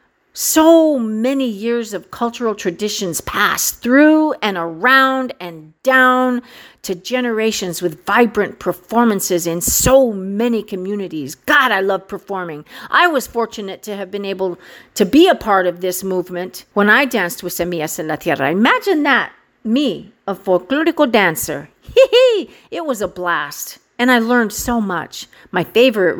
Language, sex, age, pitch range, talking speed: English, female, 50-69, 180-250 Hz, 145 wpm